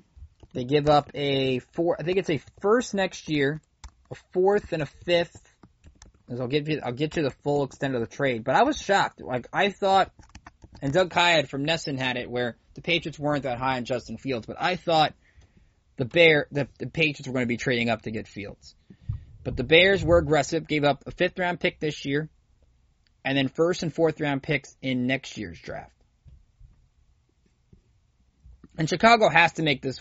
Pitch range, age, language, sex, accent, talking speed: 125-160 Hz, 20-39, English, male, American, 200 wpm